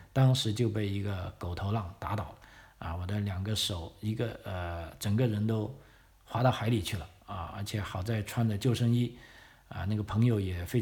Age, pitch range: 50-69, 95-120 Hz